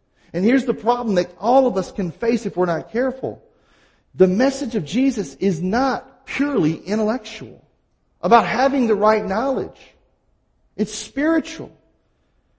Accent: American